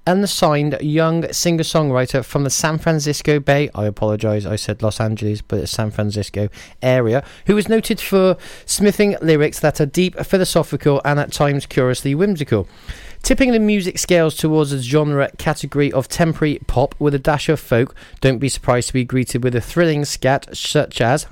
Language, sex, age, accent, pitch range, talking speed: English, male, 30-49, British, 115-155 Hz, 175 wpm